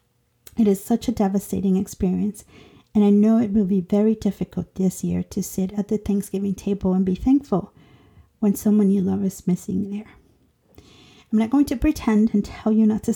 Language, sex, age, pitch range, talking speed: English, female, 50-69, 190-220 Hz, 190 wpm